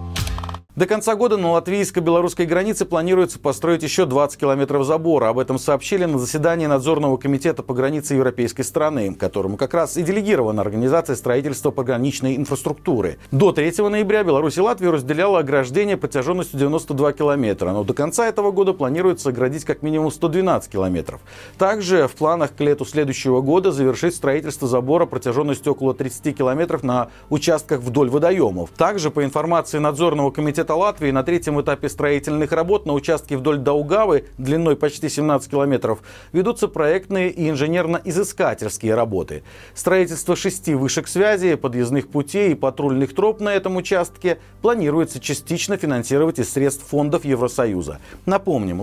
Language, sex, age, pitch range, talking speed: Russian, male, 40-59, 130-170 Hz, 145 wpm